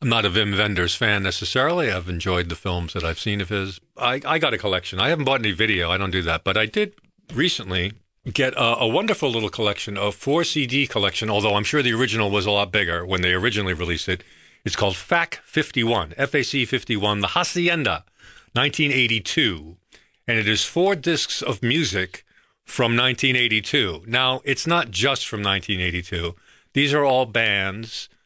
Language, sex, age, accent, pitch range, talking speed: English, male, 50-69, American, 95-130 Hz, 180 wpm